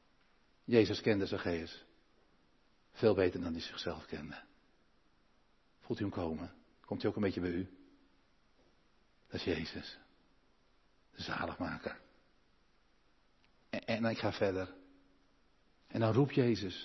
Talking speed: 120 wpm